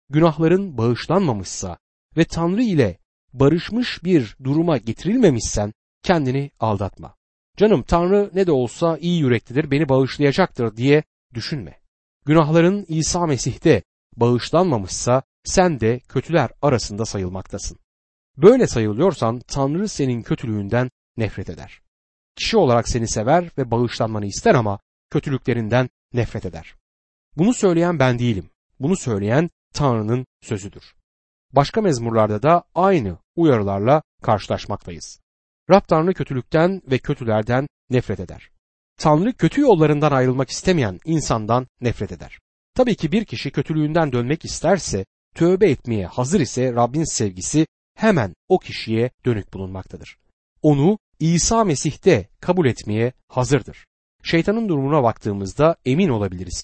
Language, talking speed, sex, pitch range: Turkish, 115 wpm, male, 105-160 Hz